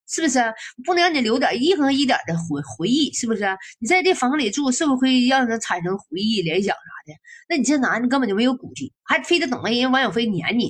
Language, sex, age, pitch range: Chinese, female, 20-39, 190-270 Hz